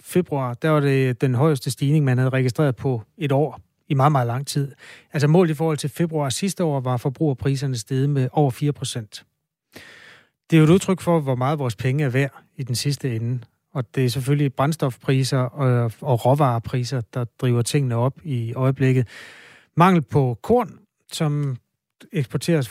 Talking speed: 175 wpm